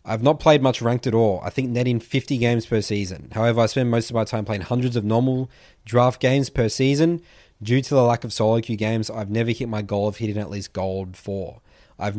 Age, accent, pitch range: 20-39, Australian, 105-125 Hz